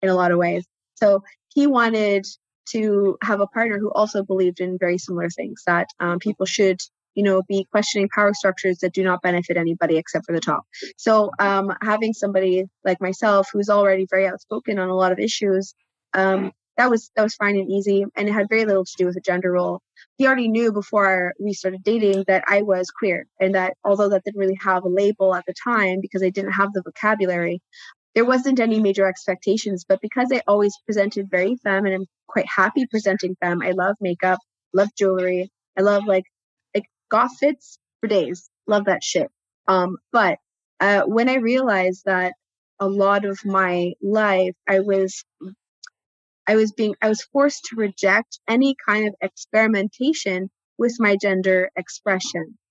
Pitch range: 185-215 Hz